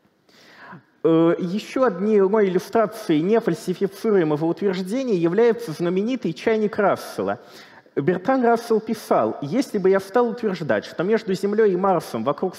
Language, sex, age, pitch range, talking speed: Russian, male, 30-49, 165-220 Hz, 110 wpm